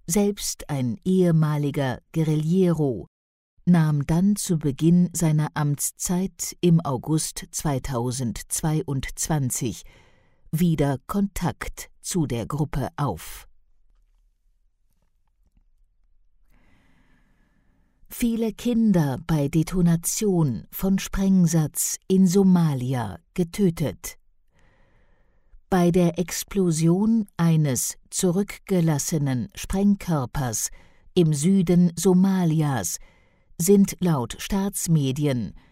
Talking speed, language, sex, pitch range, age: 65 wpm, English, female, 135-185 Hz, 50-69